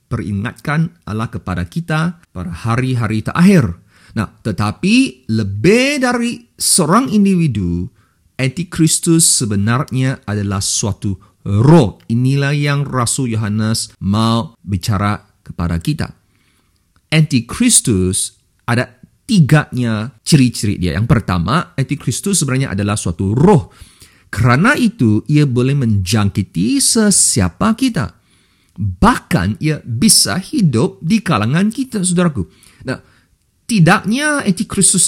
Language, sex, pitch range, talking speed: English, male, 100-165 Hz, 95 wpm